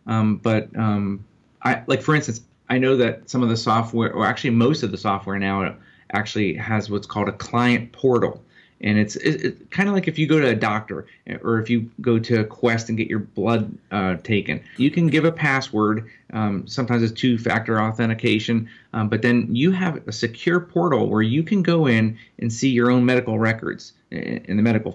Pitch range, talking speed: 110-130 Hz, 210 wpm